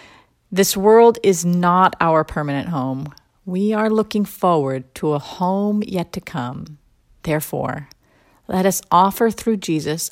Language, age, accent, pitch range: English, 50-69, American, 155-200 Hz